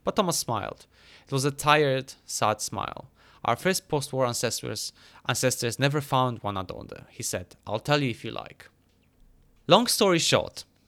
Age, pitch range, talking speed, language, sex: 20-39, 115-145 Hz, 160 wpm, English, male